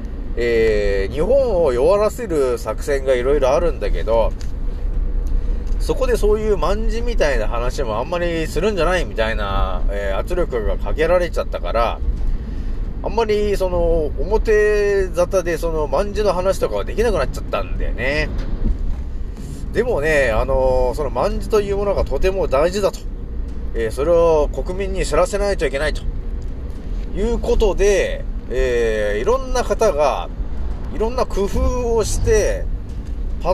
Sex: male